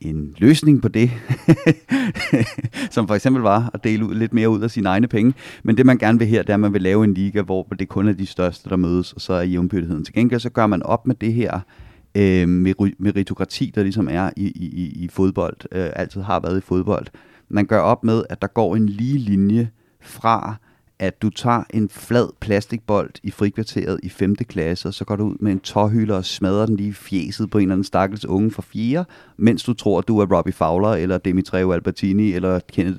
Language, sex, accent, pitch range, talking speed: Danish, male, native, 95-120 Hz, 225 wpm